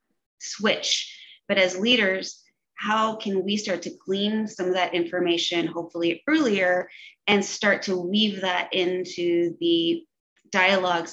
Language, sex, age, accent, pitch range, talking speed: English, female, 20-39, American, 175-210 Hz, 130 wpm